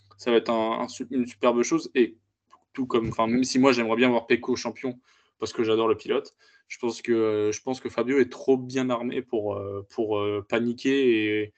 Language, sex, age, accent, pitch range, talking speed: French, male, 20-39, French, 110-130 Hz, 200 wpm